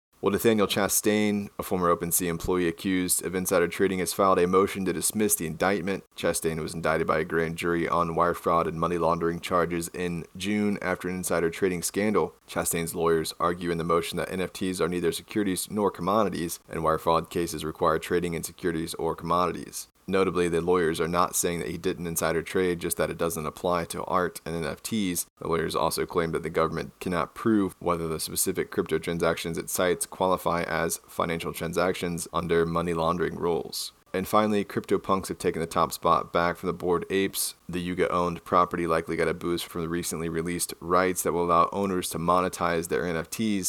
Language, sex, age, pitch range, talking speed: English, male, 20-39, 85-95 Hz, 190 wpm